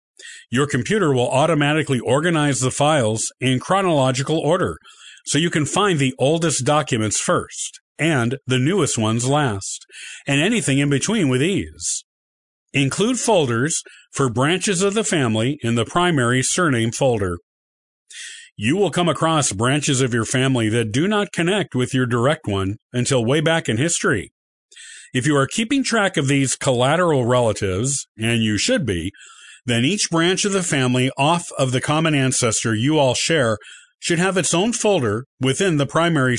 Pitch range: 120-165 Hz